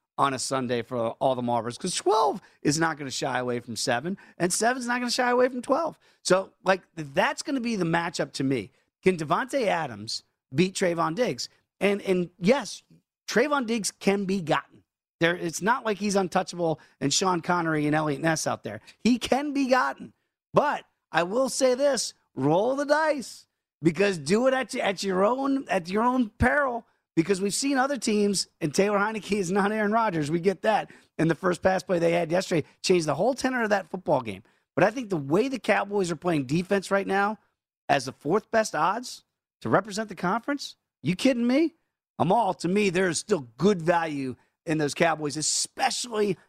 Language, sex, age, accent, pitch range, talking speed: English, male, 30-49, American, 160-225 Hz, 205 wpm